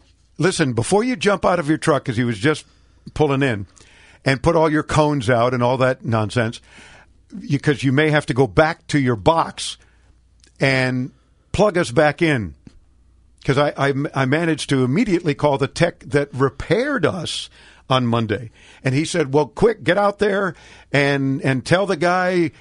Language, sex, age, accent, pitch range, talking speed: English, male, 50-69, American, 120-160 Hz, 180 wpm